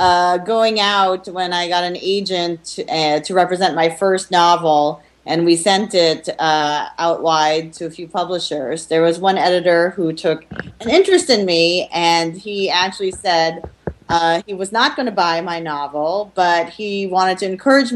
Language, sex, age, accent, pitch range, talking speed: English, female, 30-49, American, 165-195 Hz, 180 wpm